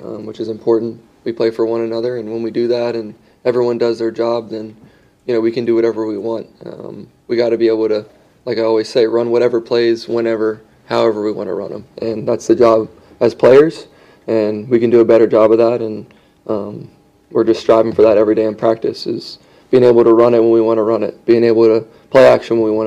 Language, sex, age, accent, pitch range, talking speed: English, male, 20-39, American, 110-120 Hz, 250 wpm